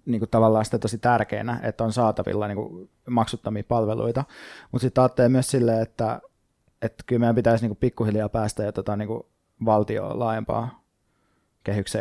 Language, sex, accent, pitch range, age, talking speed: Finnish, male, native, 110-125 Hz, 20-39, 140 wpm